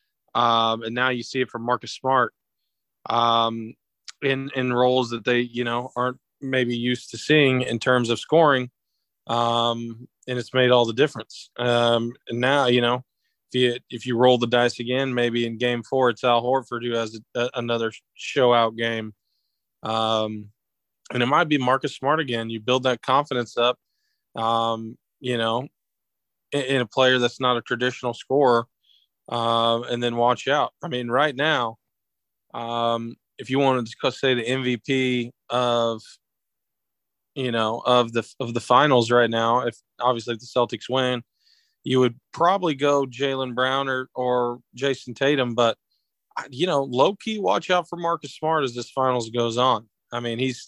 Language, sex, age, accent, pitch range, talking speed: English, male, 20-39, American, 120-130 Hz, 170 wpm